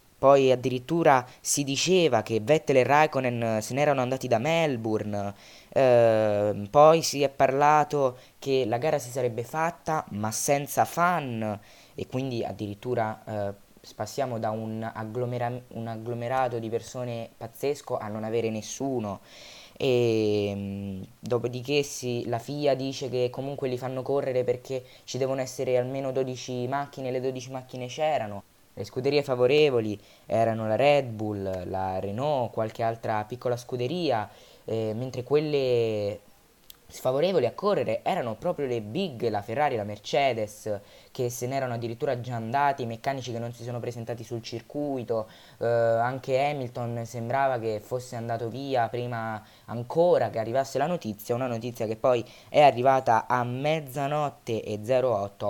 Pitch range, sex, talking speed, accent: 110-135 Hz, female, 145 wpm, native